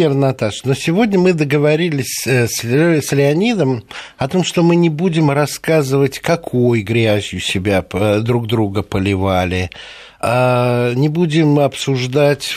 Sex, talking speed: male, 110 wpm